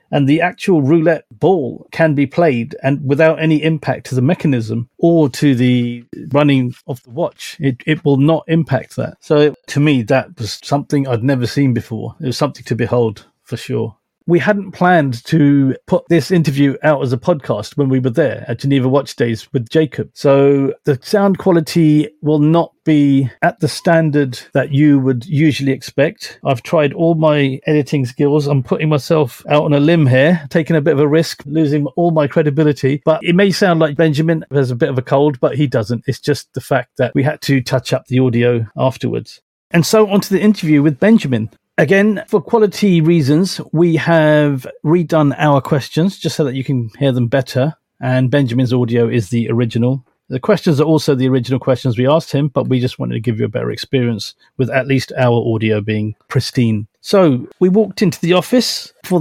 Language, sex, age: English, male, 40-59